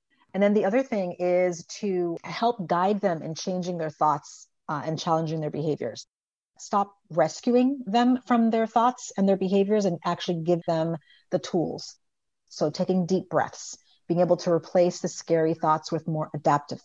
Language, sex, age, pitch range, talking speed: English, female, 40-59, 165-200 Hz, 170 wpm